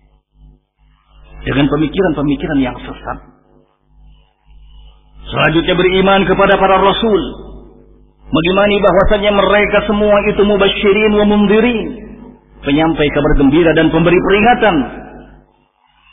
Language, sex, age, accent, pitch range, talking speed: Indonesian, male, 40-59, native, 155-205 Hz, 80 wpm